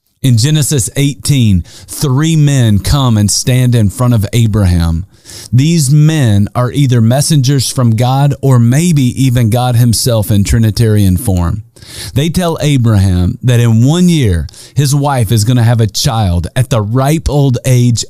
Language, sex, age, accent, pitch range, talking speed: English, male, 40-59, American, 110-140 Hz, 155 wpm